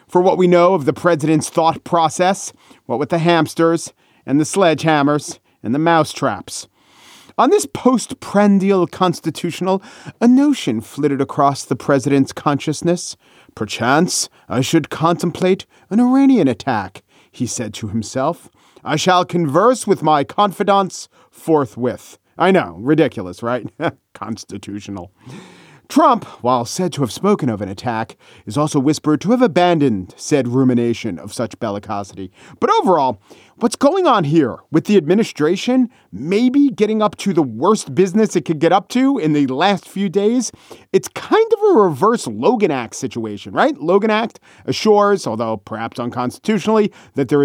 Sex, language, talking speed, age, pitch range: male, English, 145 wpm, 40-59, 135-200 Hz